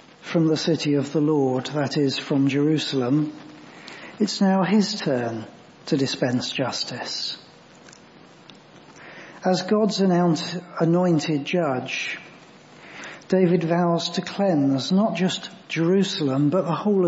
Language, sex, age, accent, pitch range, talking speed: English, male, 40-59, British, 155-185 Hz, 110 wpm